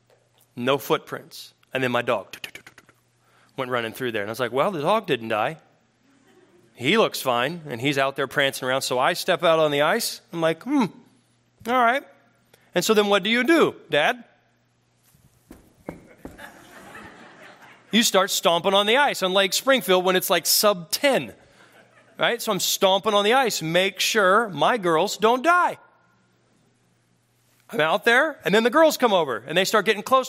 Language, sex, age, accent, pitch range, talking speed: English, male, 30-49, American, 170-245 Hz, 185 wpm